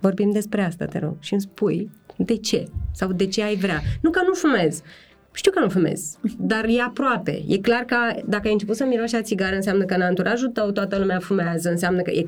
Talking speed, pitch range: 230 wpm, 190-250 Hz